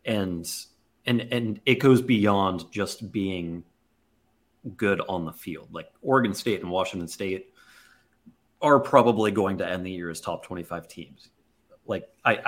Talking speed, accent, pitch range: 145 wpm, American, 90-115 Hz